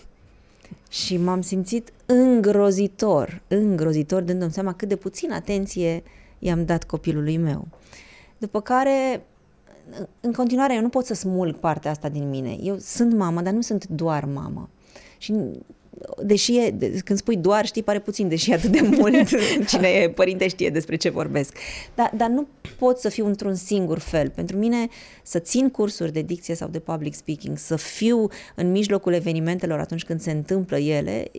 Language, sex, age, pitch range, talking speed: Romanian, female, 20-39, 155-205 Hz, 170 wpm